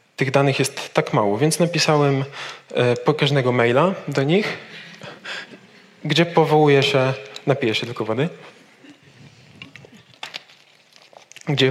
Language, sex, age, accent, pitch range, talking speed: Polish, male, 20-39, native, 125-150 Hz, 100 wpm